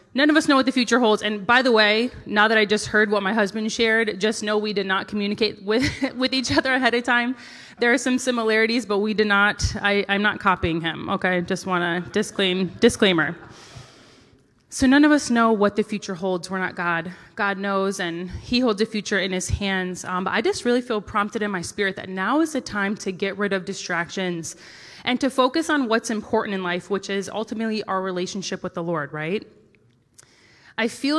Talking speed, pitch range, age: 220 wpm, 185-225 Hz, 20-39